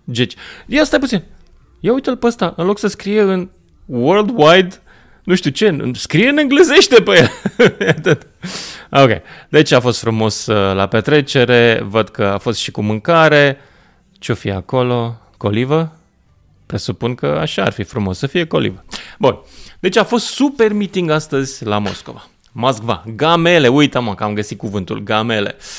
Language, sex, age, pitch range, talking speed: Romanian, male, 20-39, 110-155 Hz, 150 wpm